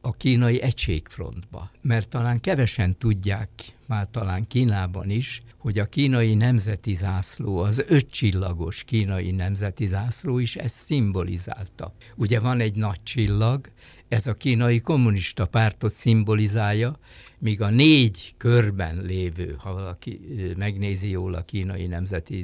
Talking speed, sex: 125 wpm, male